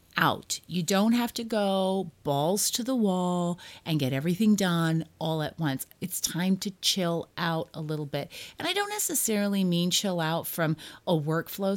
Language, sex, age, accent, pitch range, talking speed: English, female, 30-49, American, 155-215 Hz, 180 wpm